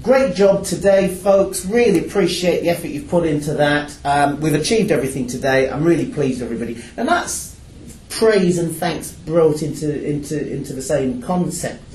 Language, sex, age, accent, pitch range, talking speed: English, male, 30-49, British, 140-185 Hz, 170 wpm